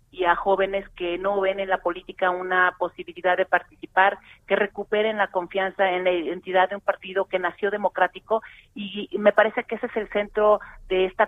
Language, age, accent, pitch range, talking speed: Spanish, 40-59, Mexican, 185-215 Hz, 190 wpm